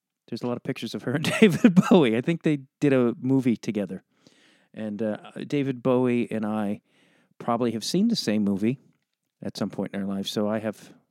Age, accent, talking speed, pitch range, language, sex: 40-59, American, 205 wpm, 115-150 Hz, English, male